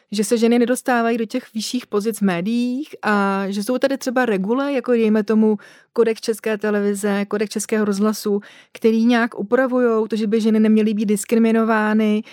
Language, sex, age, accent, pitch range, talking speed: Czech, female, 30-49, native, 205-230 Hz, 170 wpm